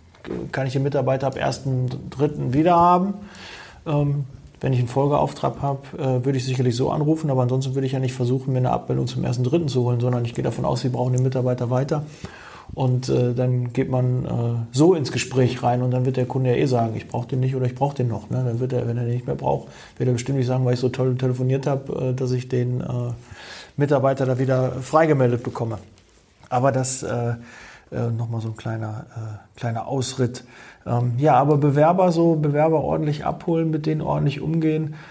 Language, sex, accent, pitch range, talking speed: German, male, German, 125-145 Hz, 195 wpm